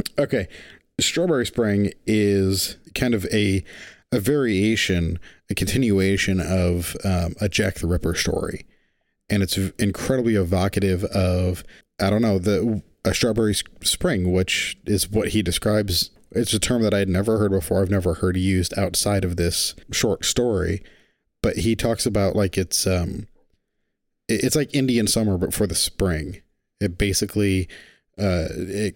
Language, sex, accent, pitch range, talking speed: English, male, American, 90-110 Hz, 150 wpm